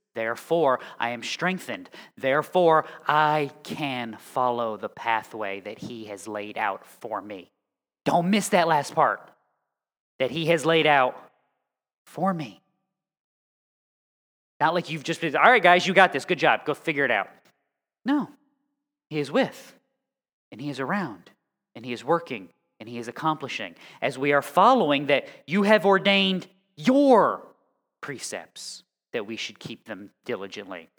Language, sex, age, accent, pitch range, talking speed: English, male, 20-39, American, 140-195 Hz, 150 wpm